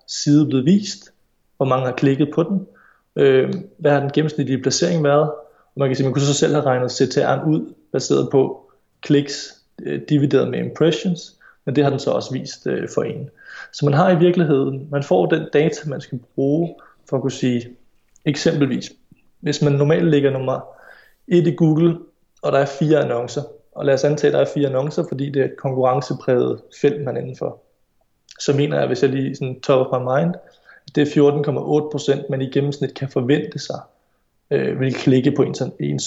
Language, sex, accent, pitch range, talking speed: Danish, male, native, 135-155 Hz, 195 wpm